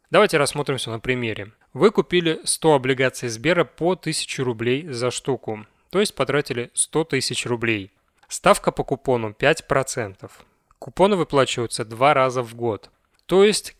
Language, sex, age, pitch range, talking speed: Russian, male, 30-49, 120-160 Hz, 145 wpm